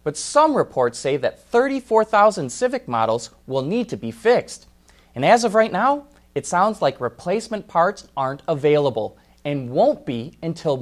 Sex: male